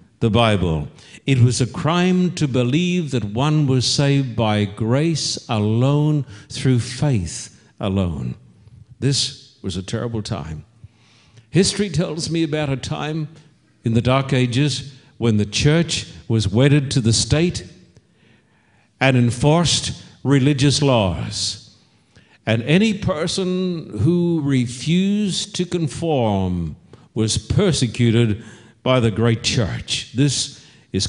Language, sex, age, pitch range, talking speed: English, male, 60-79, 115-140 Hz, 115 wpm